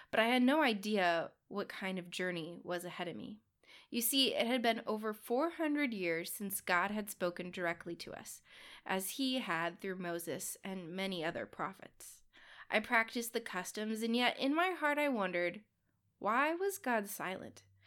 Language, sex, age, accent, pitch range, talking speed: English, female, 20-39, American, 185-250 Hz, 175 wpm